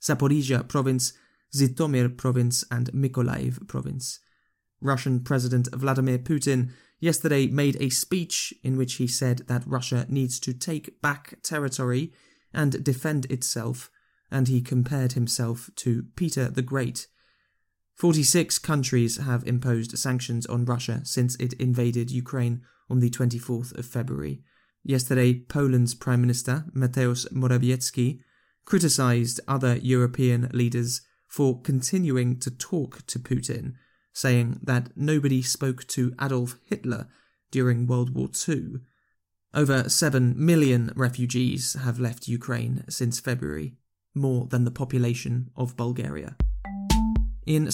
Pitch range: 120-140 Hz